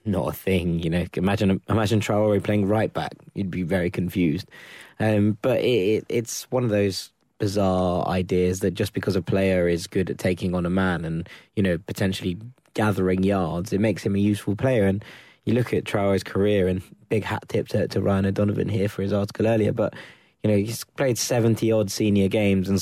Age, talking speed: 20-39, 205 wpm